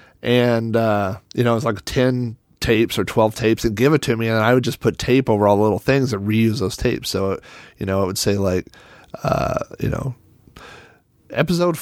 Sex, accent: male, American